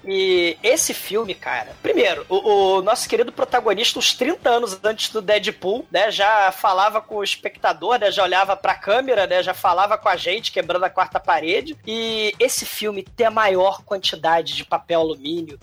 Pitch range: 180-235 Hz